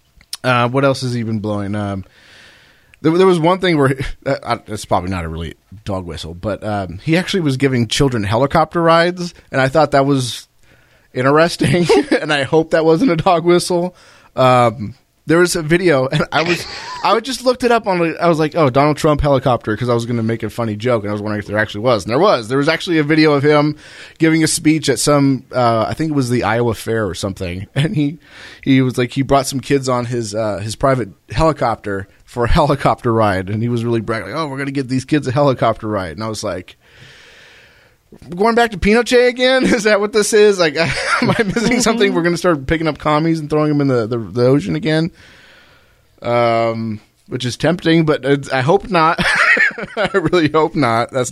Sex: male